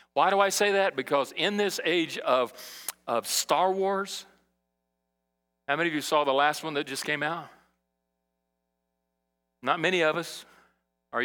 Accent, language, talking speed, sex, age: American, English, 160 wpm, male, 40-59